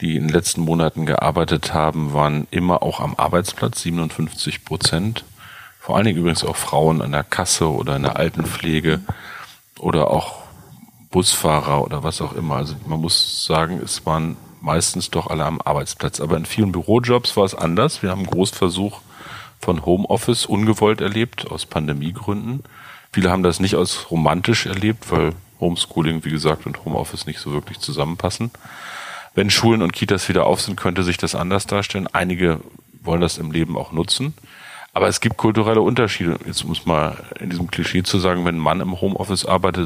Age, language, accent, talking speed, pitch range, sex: 40-59, German, German, 175 wpm, 80-100 Hz, male